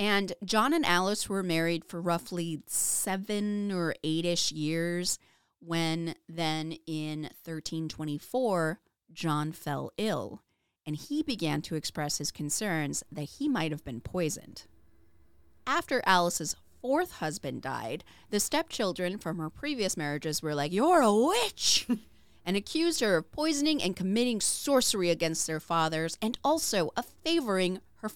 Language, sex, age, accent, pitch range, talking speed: English, female, 30-49, American, 160-215 Hz, 135 wpm